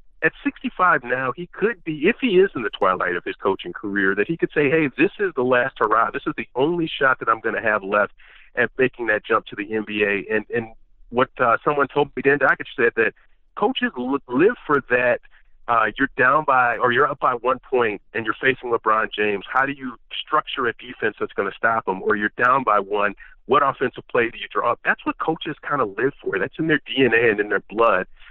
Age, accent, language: 40-59, American, English